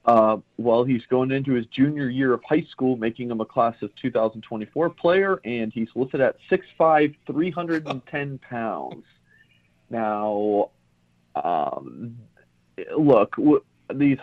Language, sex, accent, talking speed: English, male, American, 145 wpm